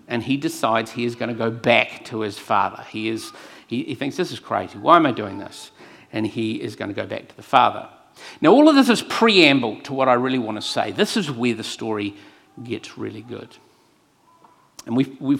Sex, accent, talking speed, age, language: male, Australian, 230 wpm, 50-69, English